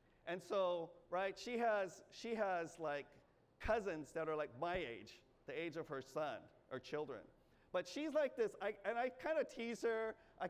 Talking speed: 190 wpm